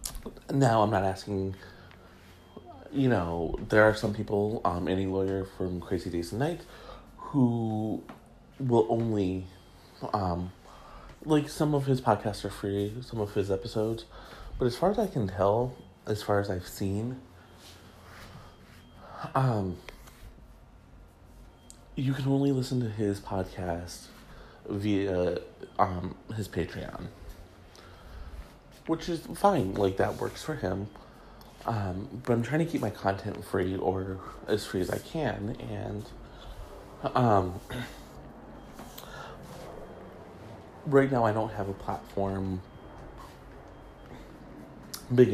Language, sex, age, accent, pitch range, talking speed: English, male, 30-49, American, 95-120 Hz, 120 wpm